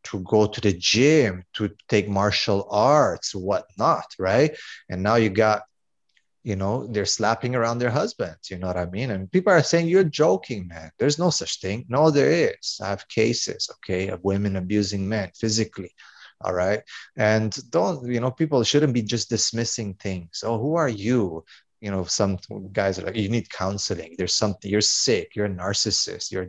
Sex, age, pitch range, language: male, 30-49, 95-115 Hz, English